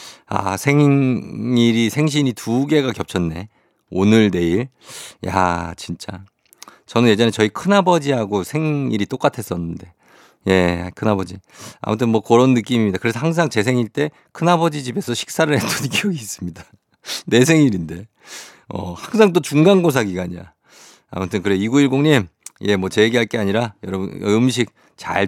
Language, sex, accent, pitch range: Korean, male, native, 95-125 Hz